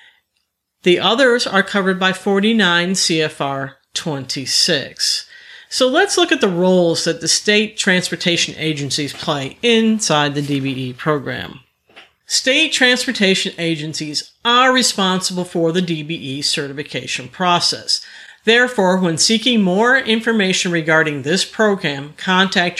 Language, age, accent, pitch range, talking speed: English, 50-69, American, 160-220 Hz, 115 wpm